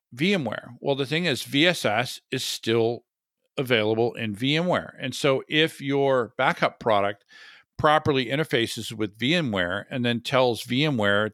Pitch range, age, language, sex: 110-135 Hz, 50-69, English, male